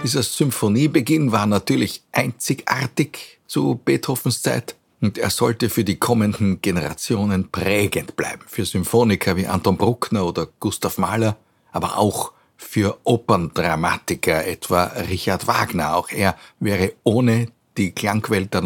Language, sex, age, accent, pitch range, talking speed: German, male, 50-69, Austrian, 95-120 Hz, 125 wpm